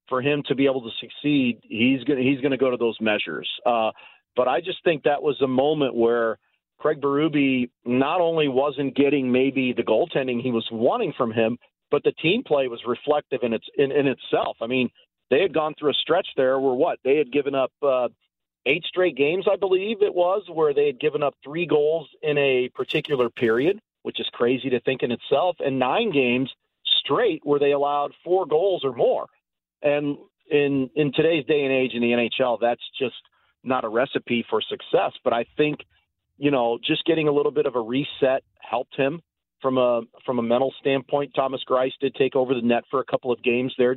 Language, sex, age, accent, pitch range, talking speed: English, male, 40-59, American, 125-150 Hz, 205 wpm